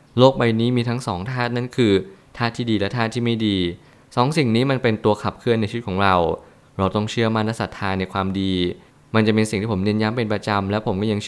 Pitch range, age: 100-125 Hz, 20-39